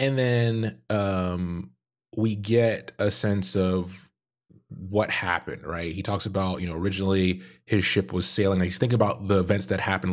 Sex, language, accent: male, English, American